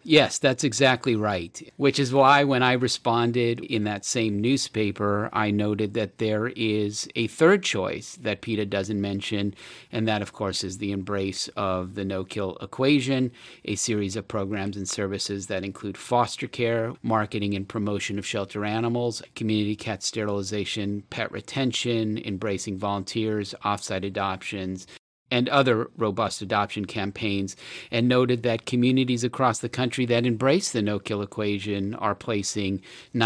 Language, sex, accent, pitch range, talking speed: English, male, American, 100-120 Hz, 145 wpm